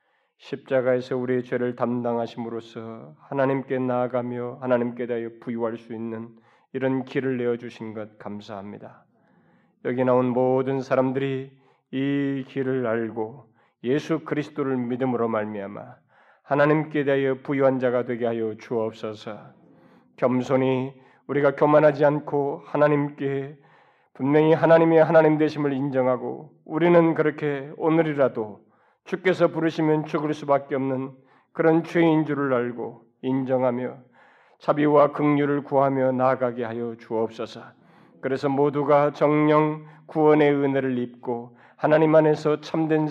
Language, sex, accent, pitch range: Korean, male, native, 125-150 Hz